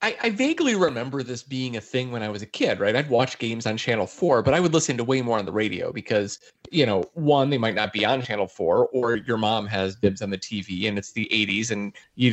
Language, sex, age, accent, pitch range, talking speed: English, male, 30-49, American, 110-160 Hz, 270 wpm